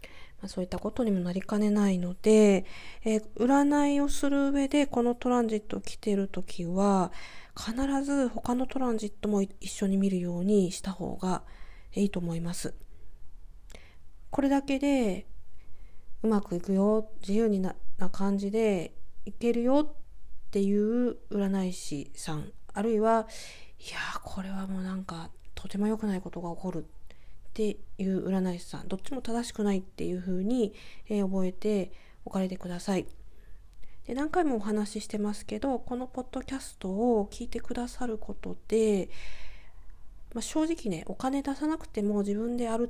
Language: Japanese